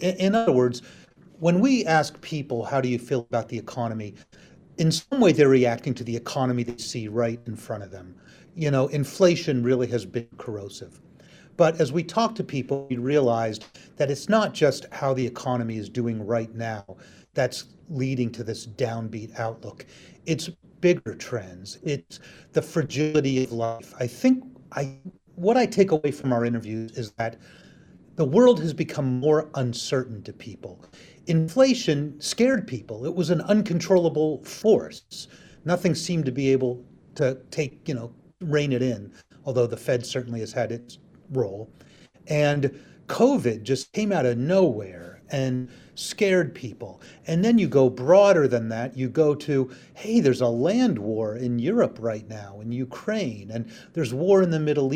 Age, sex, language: 40-59, male, English